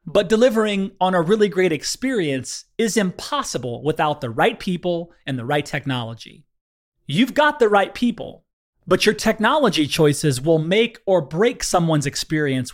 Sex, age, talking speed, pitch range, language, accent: male, 30-49, 150 wpm, 140-215 Hz, English, American